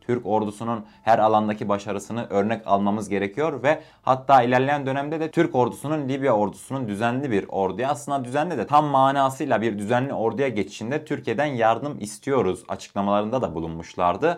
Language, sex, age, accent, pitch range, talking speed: Turkish, male, 30-49, native, 105-140 Hz, 145 wpm